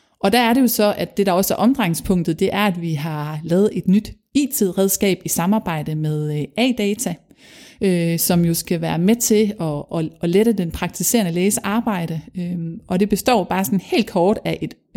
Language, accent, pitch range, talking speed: Danish, native, 180-230 Hz, 190 wpm